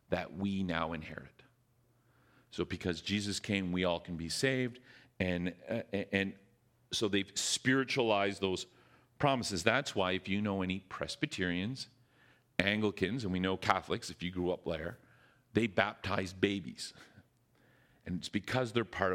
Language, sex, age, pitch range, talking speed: English, male, 40-59, 100-130 Hz, 145 wpm